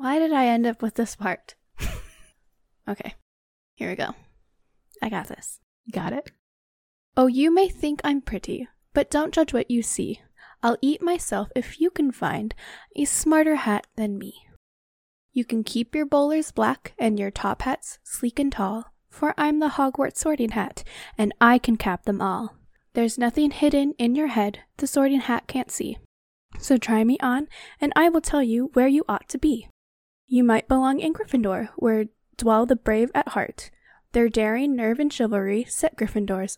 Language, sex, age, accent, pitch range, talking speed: English, female, 10-29, American, 220-285 Hz, 180 wpm